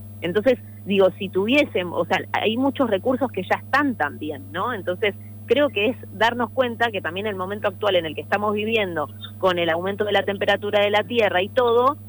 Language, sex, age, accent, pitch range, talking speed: Spanish, female, 20-39, Argentinian, 150-225 Hz, 205 wpm